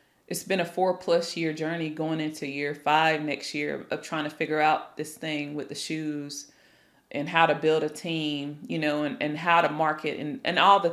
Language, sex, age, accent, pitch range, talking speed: English, female, 20-39, American, 155-200 Hz, 220 wpm